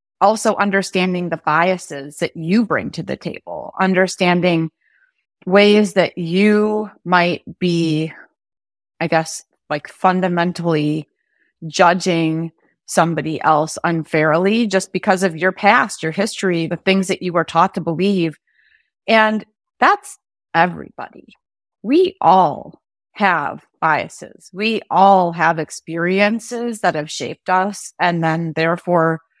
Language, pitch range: English, 160-200 Hz